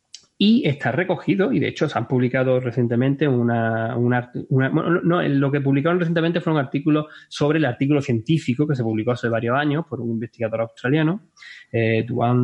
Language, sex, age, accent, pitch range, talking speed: Spanish, male, 20-39, Spanish, 115-145 Hz, 185 wpm